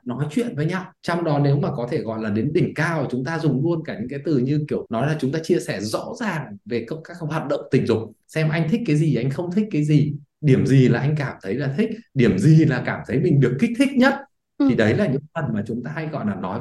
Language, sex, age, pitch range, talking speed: Vietnamese, male, 20-39, 135-185 Hz, 285 wpm